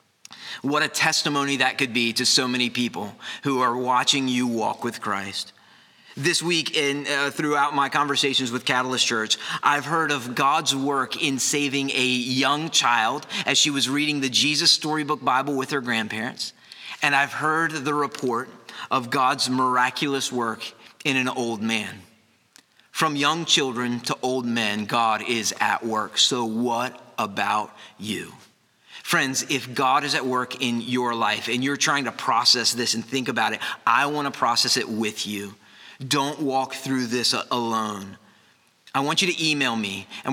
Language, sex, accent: English, male, American